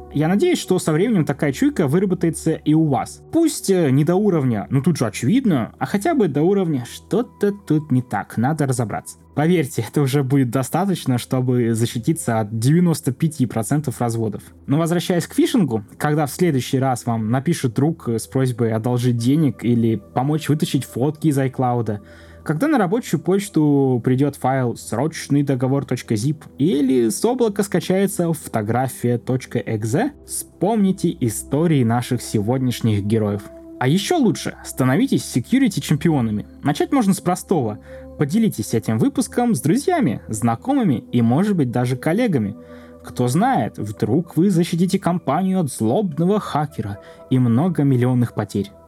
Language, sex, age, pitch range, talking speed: Russian, male, 20-39, 115-175 Hz, 140 wpm